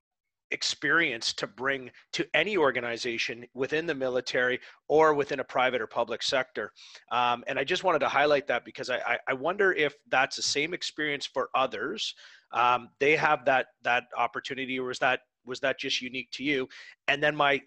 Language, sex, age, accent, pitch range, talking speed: English, male, 30-49, American, 125-150 Hz, 180 wpm